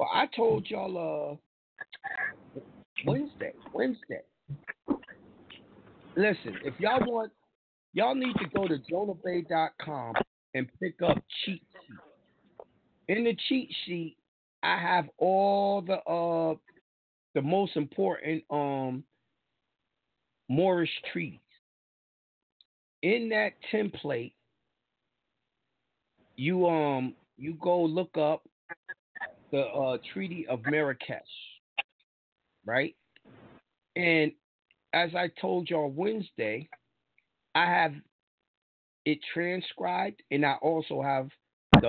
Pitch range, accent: 150-195 Hz, American